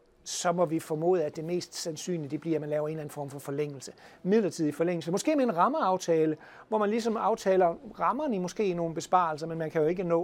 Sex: male